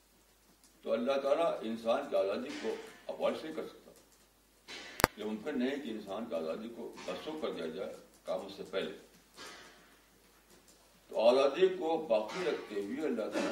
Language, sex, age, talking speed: Urdu, male, 60-79, 150 wpm